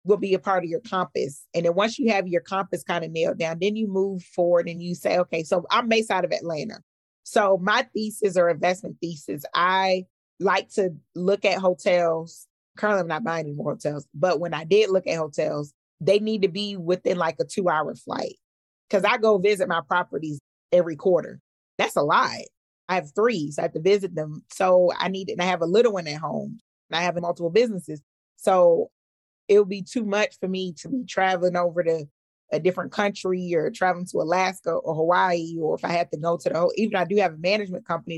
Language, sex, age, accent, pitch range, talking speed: English, female, 30-49, American, 170-200 Hz, 220 wpm